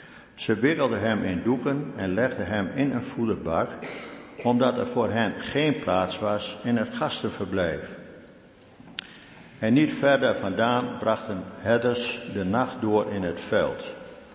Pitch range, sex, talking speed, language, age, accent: 110-135 Hz, male, 140 wpm, Dutch, 60-79, Dutch